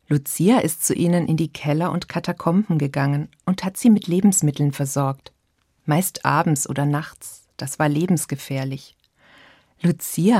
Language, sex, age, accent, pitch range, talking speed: German, female, 50-69, German, 145-185 Hz, 140 wpm